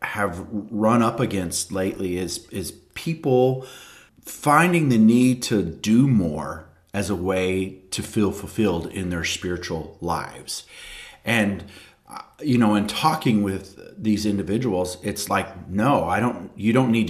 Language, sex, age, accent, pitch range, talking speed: English, male, 40-59, American, 90-110 Hz, 140 wpm